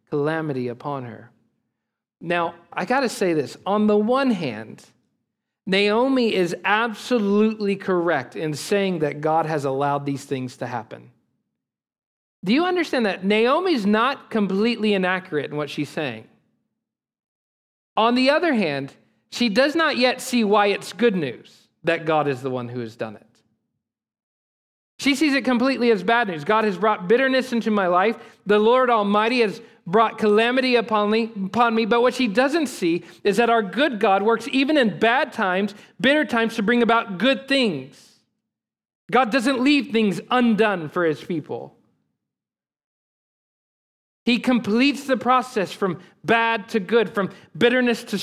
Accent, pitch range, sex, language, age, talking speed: American, 185-245 Hz, male, English, 40-59, 155 wpm